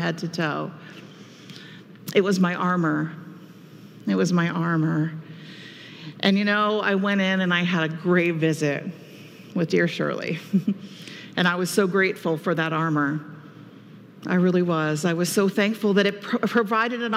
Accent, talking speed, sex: American, 155 wpm, female